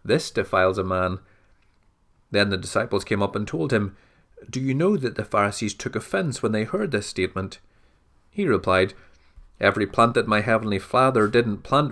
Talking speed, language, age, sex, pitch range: 175 wpm, English, 30-49, male, 95-115 Hz